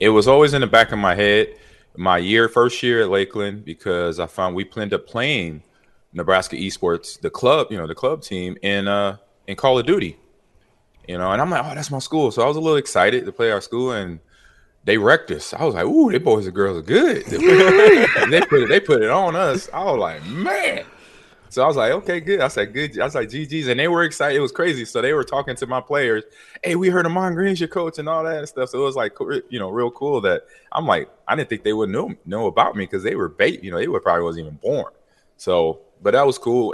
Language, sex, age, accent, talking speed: English, male, 20-39, American, 260 wpm